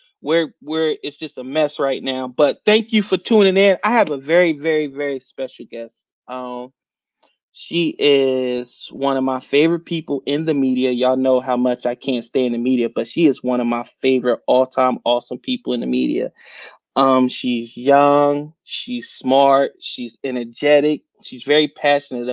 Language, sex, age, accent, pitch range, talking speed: English, male, 20-39, American, 130-180 Hz, 175 wpm